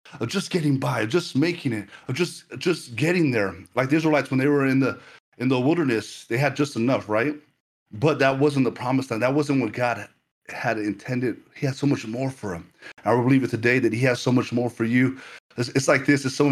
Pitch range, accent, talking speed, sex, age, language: 125-155 Hz, American, 240 wpm, male, 30-49, English